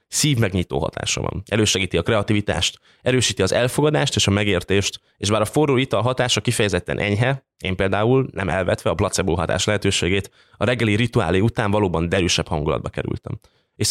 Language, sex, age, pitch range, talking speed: Hungarian, male, 20-39, 95-120 Hz, 165 wpm